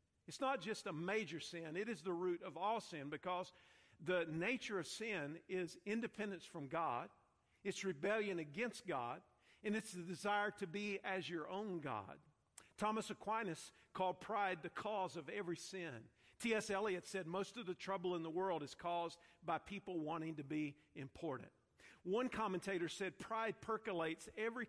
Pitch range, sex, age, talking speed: 160-200 Hz, male, 50-69, 170 wpm